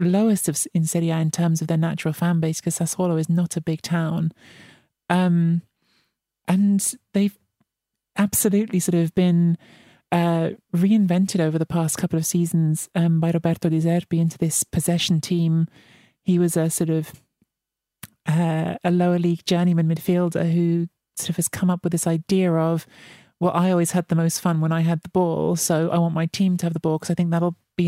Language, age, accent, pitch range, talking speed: English, 30-49, British, 160-175 Hz, 190 wpm